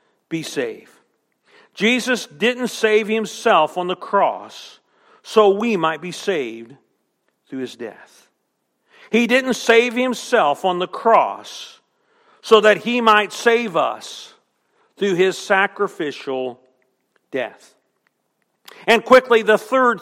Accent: American